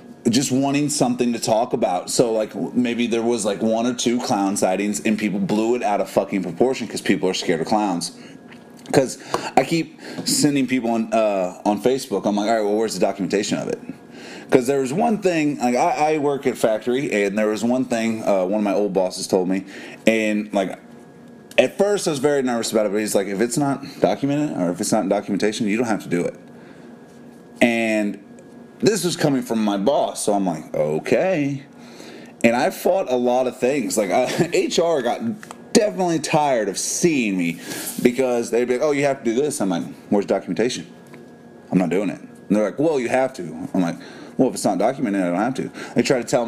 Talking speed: 220 wpm